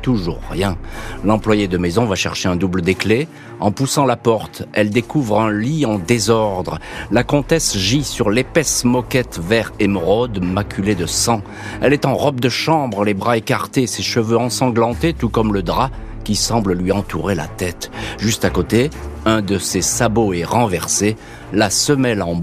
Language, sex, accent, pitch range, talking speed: French, male, French, 95-120 Hz, 175 wpm